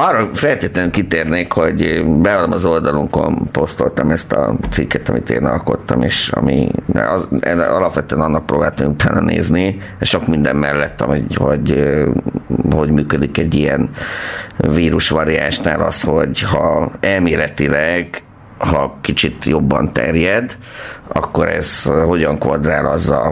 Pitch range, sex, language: 75-95 Hz, male, Hungarian